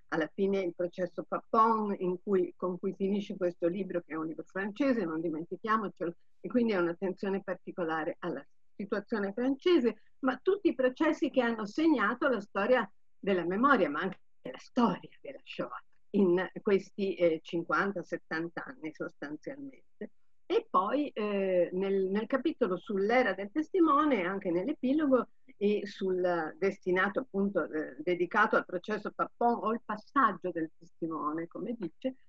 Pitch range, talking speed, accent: 180-245 Hz, 145 wpm, native